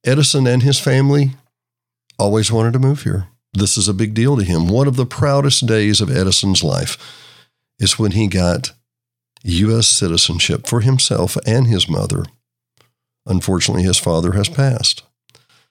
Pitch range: 95-125 Hz